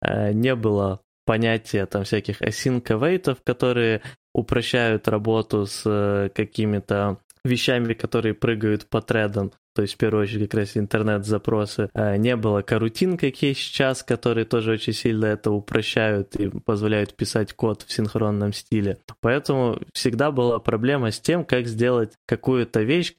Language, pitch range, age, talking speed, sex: Ukrainian, 105-125 Hz, 20-39, 135 wpm, male